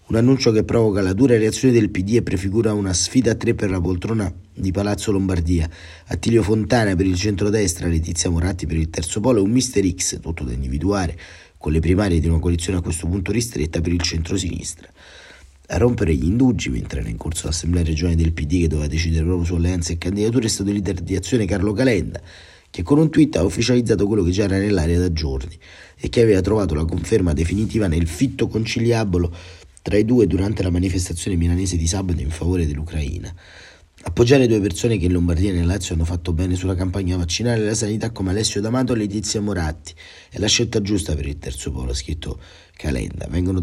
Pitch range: 85-105 Hz